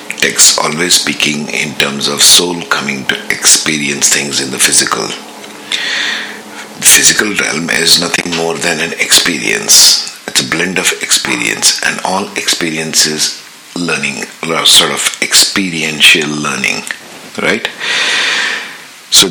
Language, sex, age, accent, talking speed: English, male, 50-69, Indian, 120 wpm